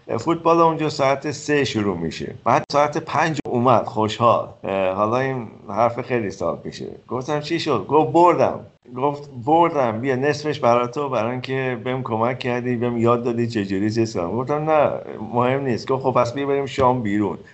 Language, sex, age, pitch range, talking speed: Persian, male, 50-69, 95-130 Hz, 165 wpm